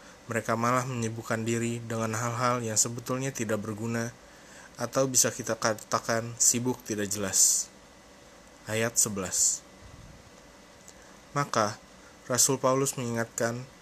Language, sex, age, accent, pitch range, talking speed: Indonesian, male, 20-39, native, 110-125 Hz, 100 wpm